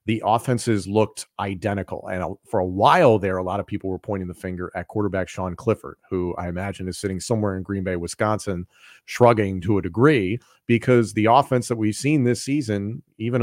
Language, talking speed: English, 195 wpm